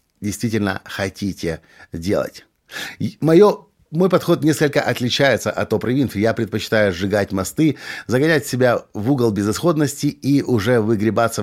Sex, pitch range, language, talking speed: male, 105-140 Hz, Russian, 120 wpm